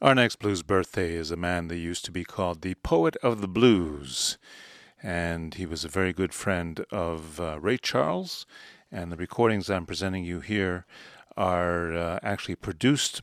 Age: 40-59